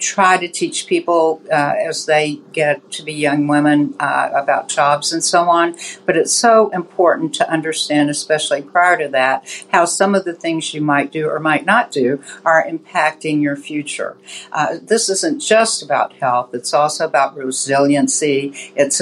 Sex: female